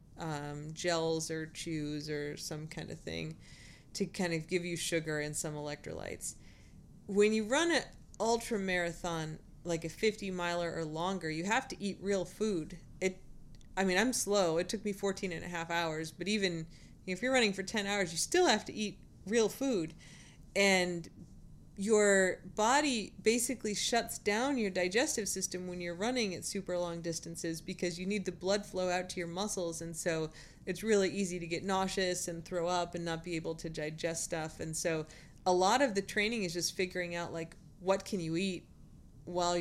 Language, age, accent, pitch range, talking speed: English, 30-49, American, 165-195 Hz, 190 wpm